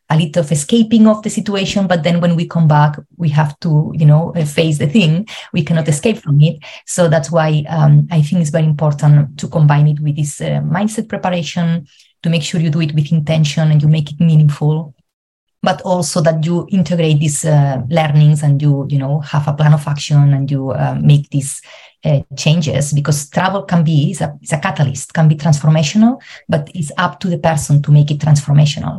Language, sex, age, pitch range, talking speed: English, female, 30-49, 150-175 Hz, 210 wpm